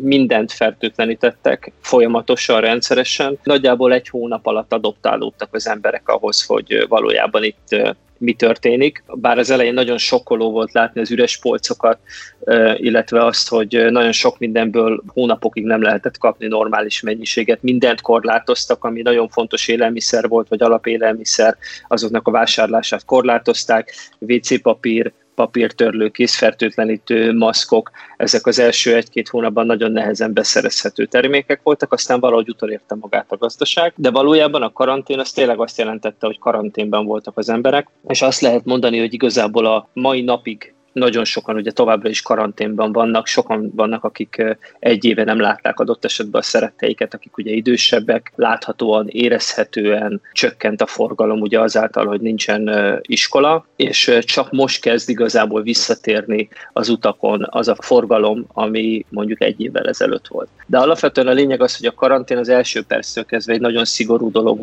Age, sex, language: 20-39, male, Hungarian